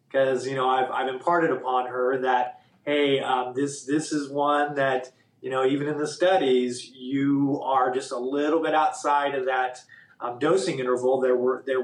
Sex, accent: male, American